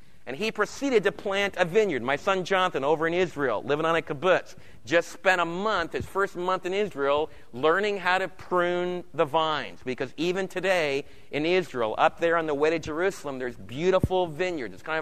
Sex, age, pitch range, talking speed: male, 40-59, 155-195 Hz, 195 wpm